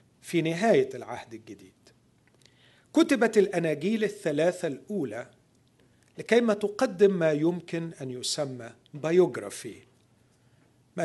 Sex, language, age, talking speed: male, Arabic, 50-69, 85 wpm